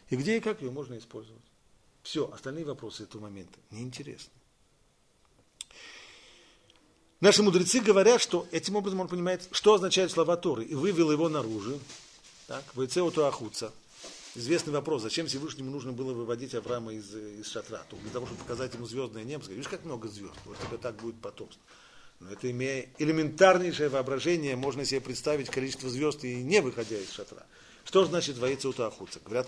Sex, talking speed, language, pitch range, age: male, 165 wpm, Russian, 125-180 Hz, 40-59